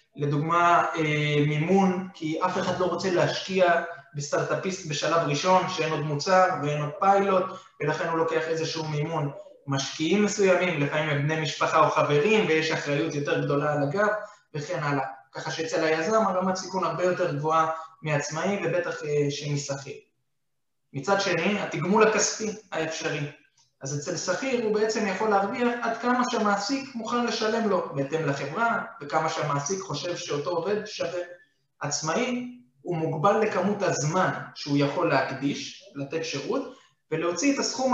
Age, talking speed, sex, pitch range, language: 20-39, 140 wpm, male, 150-200 Hz, English